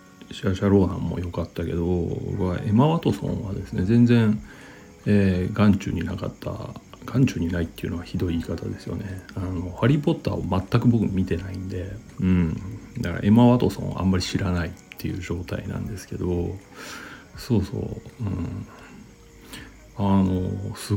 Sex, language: male, Japanese